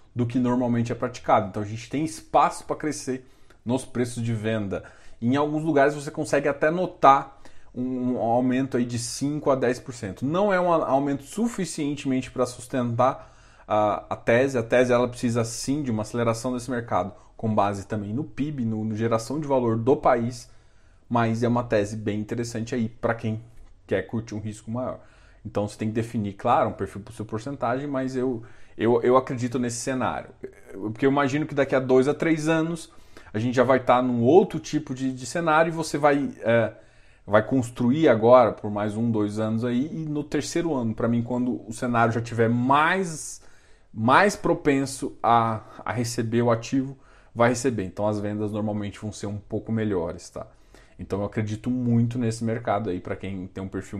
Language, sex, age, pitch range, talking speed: Portuguese, male, 20-39, 110-135 Hz, 190 wpm